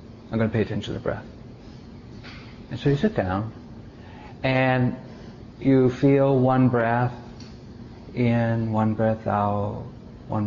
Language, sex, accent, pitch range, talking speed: English, male, American, 110-125 Hz, 130 wpm